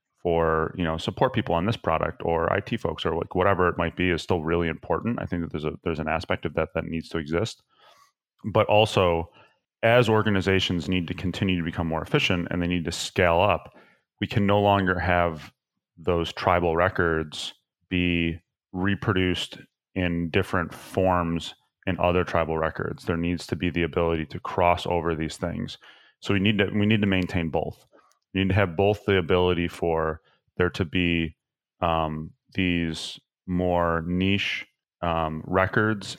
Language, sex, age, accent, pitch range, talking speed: English, male, 30-49, American, 85-95 Hz, 175 wpm